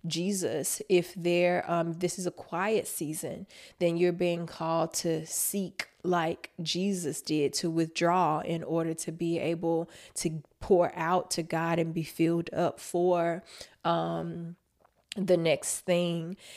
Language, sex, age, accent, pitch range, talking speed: English, female, 20-39, American, 170-180 Hz, 140 wpm